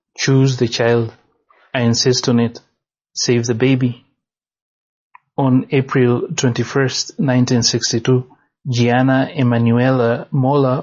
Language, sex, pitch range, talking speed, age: English, male, 120-140 Hz, 95 wpm, 30-49